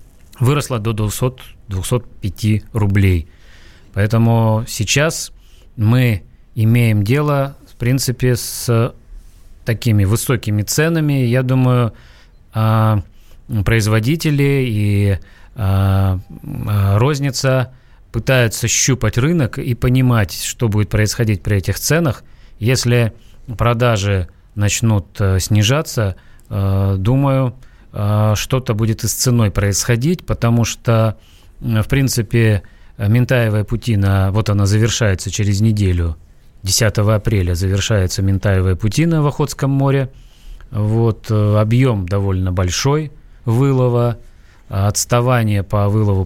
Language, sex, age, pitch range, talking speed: Russian, male, 30-49, 100-125 Hz, 90 wpm